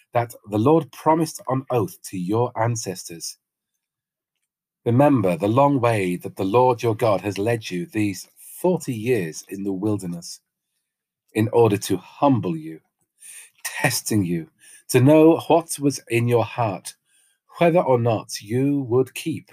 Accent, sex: British, male